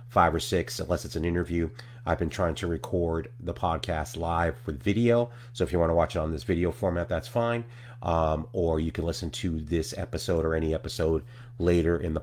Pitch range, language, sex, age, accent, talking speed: 85-115 Hz, English, male, 30-49, American, 215 wpm